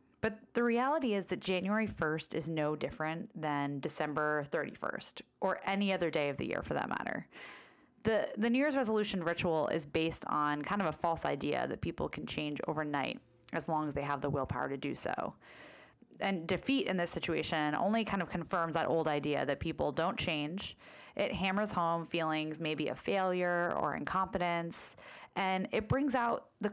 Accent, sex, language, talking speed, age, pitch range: American, female, English, 185 wpm, 20-39, 150-195 Hz